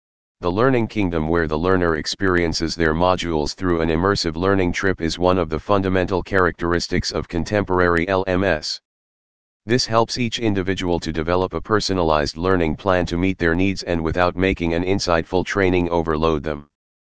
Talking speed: 160 wpm